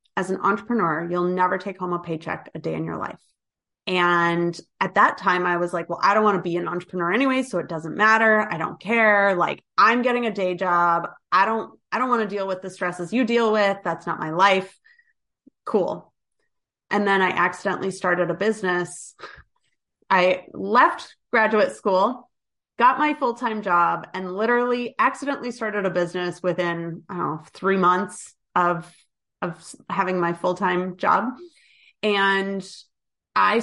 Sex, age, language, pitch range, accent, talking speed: female, 30-49, English, 180-225 Hz, American, 170 wpm